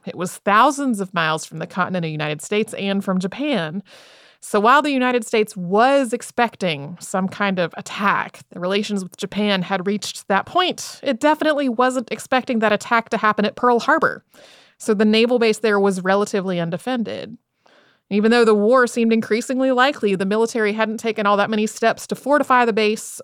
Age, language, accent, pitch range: 30-49, English, American, 190-240 Hz